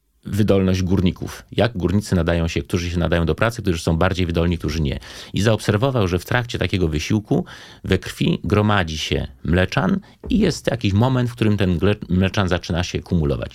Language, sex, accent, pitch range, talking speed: Polish, male, native, 85-115 Hz, 175 wpm